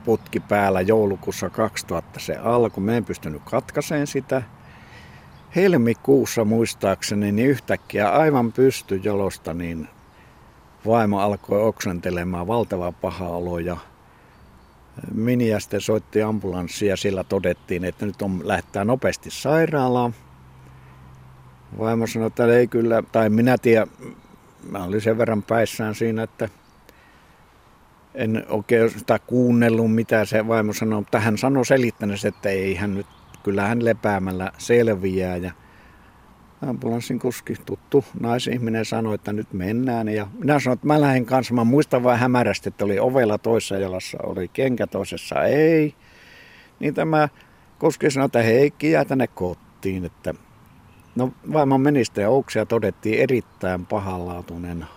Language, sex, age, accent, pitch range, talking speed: Finnish, male, 60-79, native, 95-120 Hz, 125 wpm